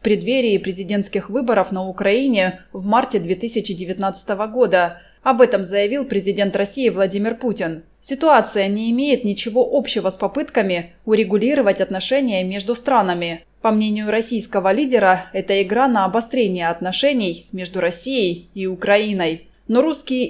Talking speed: 125 wpm